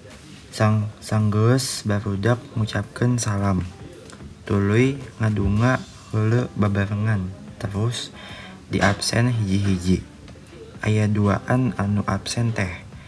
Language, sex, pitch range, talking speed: Indonesian, male, 100-120 Hz, 85 wpm